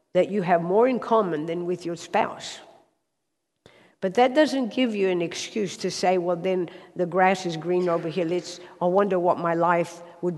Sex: female